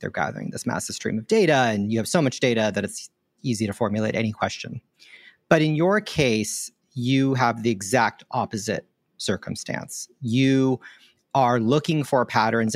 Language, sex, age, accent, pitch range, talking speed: English, male, 40-59, American, 105-130 Hz, 165 wpm